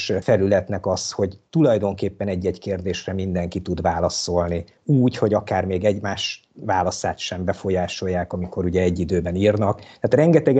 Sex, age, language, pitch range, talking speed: male, 50-69, Hungarian, 90-125 Hz, 135 wpm